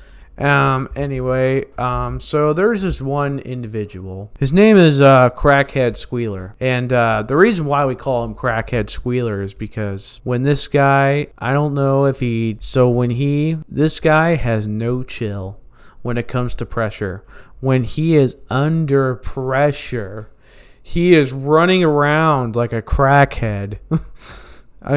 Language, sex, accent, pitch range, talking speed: English, male, American, 110-145 Hz, 145 wpm